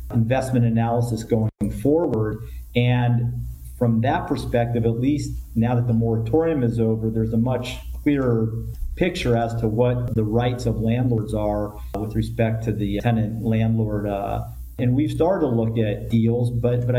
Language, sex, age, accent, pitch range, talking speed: English, male, 50-69, American, 105-120 Hz, 160 wpm